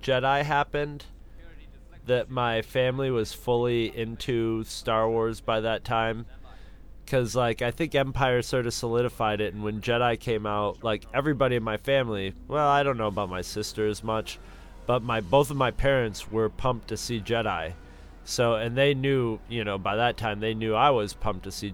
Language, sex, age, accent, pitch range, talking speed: English, male, 30-49, American, 100-120 Hz, 190 wpm